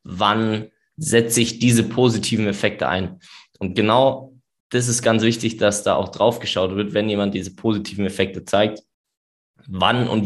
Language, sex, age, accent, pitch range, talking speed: German, male, 20-39, German, 100-115 Hz, 160 wpm